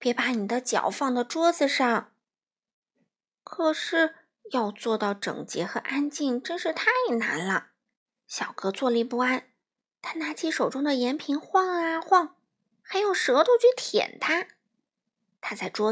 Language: Chinese